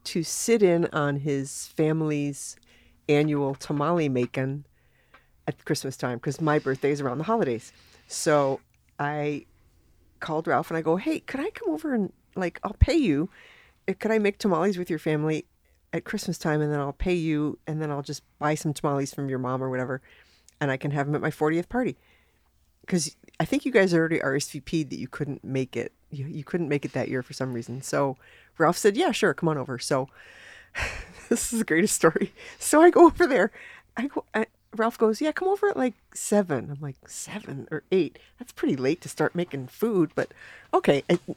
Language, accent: English, American